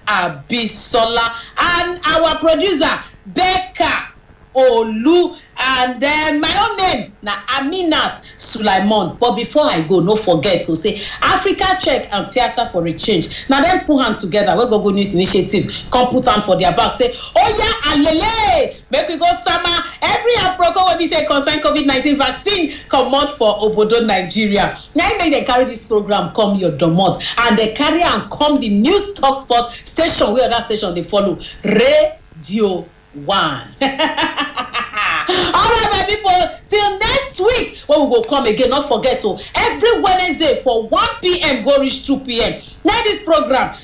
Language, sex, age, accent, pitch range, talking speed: English, female, 40-59, Nigerian, 215-335 Hz, 165 wpm